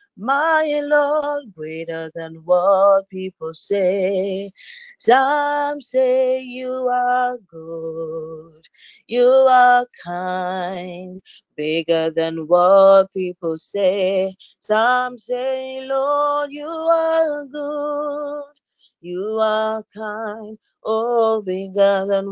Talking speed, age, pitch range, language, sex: 85 wpm, 30-49, 185-265 Hz, English, female